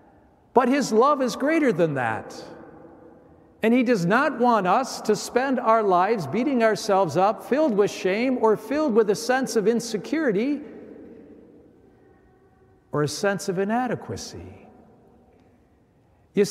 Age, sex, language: 60-79, male, English